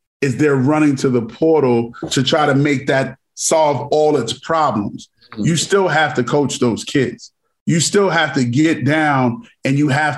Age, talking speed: 30-49, 185 wpm